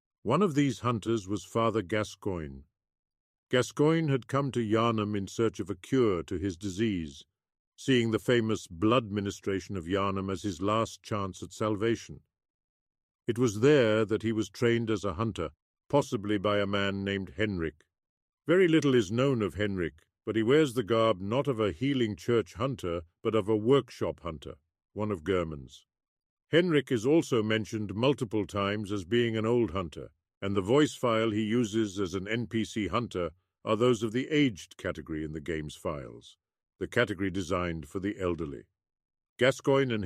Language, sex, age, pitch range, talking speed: English, male, 50-69, 95-120 Hz, 170 wpm